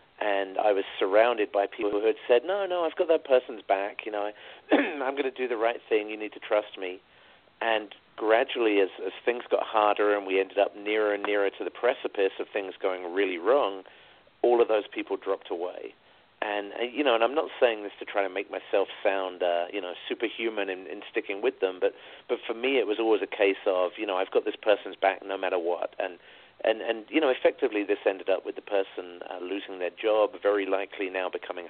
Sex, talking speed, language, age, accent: male, 230 wpm, English, 40-59, British